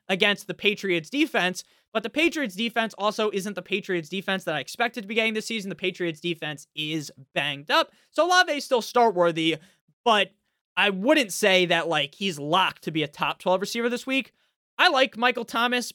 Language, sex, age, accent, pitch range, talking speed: English, male, 20-39, American, 180-250 Hz, 190 wpm